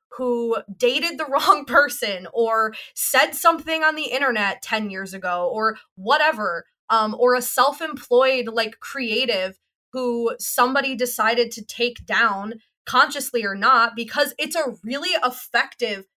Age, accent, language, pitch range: 20-39, American, English, 220-275 Hz